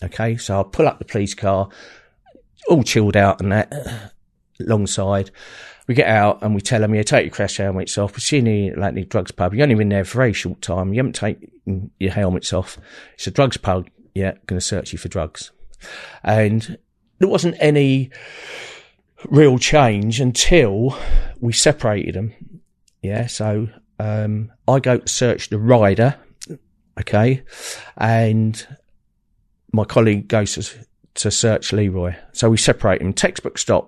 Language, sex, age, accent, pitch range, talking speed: English, male, 40-59, British, 100-125 Hz, 170 wpm